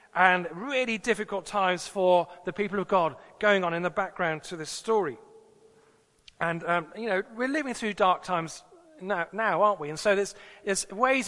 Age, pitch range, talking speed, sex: 40-59, 185-235 Hz, 185 wpm, male